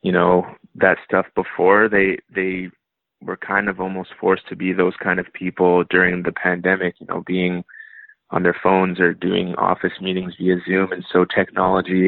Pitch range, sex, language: 90-95 Hz, male, English